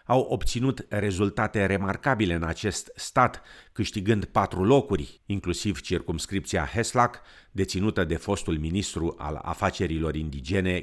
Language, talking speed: Romanian, 110 wpm